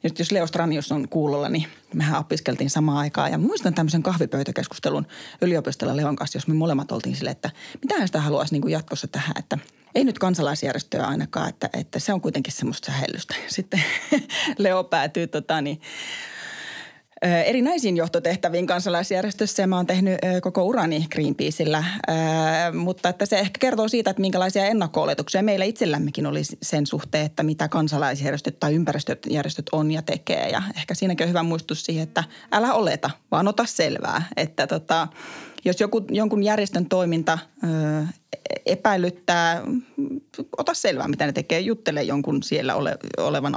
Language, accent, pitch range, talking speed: Finnish, native, 155-205 Hz, 155 wpm